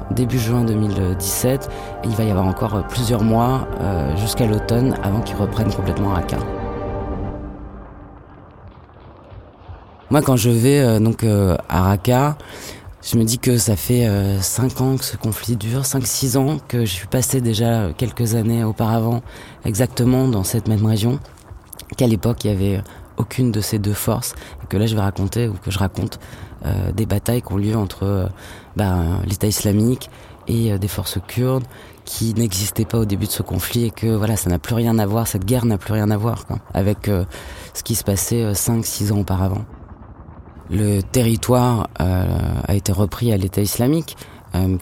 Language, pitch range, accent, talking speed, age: French, 100-115 Hz, French, 185 wpm, 30-49